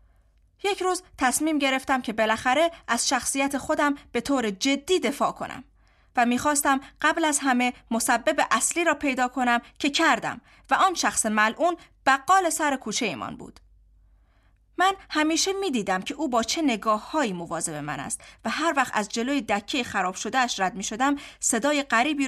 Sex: female